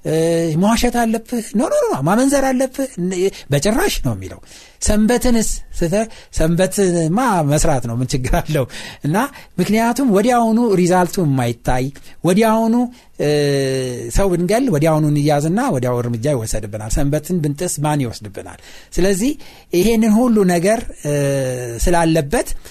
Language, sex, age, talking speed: Amharic, male, 60-79, 105 wpm